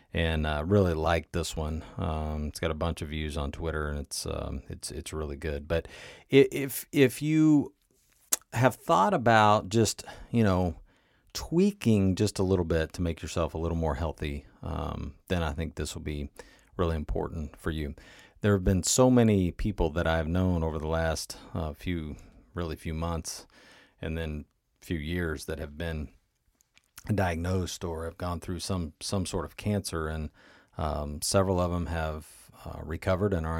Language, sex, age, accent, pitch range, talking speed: English, male, 40-59, American, 80-95 Hz, 175 wpm